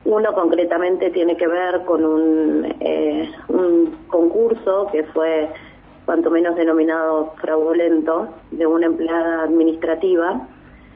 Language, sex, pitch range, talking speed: Spanish, female, 155-175 Hz, 105 wpm